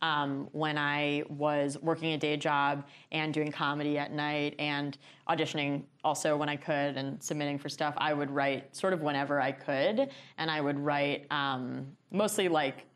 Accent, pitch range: American, 145-160 Hz